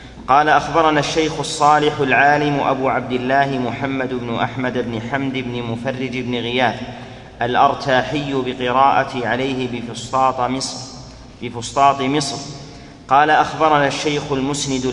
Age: 40-59